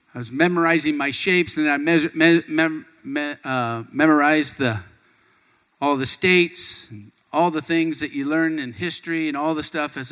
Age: 50-69